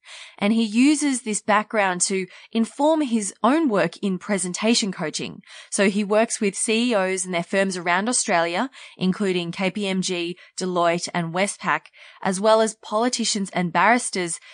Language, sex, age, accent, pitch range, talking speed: English, female, 20-39, Australian, 180-245 Hz, 140 wpm